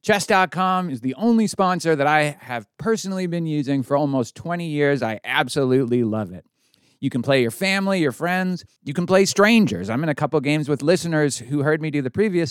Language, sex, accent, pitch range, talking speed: English, male, American, 120-160 Hz, 205 wpm